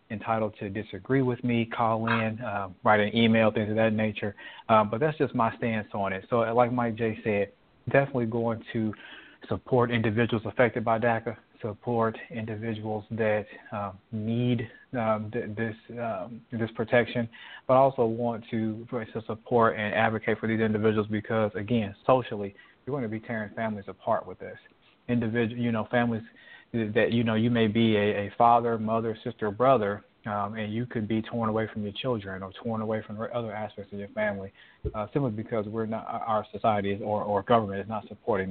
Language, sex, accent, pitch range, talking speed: English, male, American, 105-120 Hz, 185 wpm